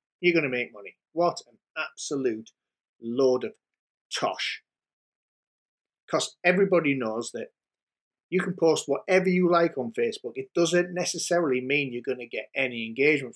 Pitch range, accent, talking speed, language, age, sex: 125-185 Hz, British, 150 wpm, English, 30-49, male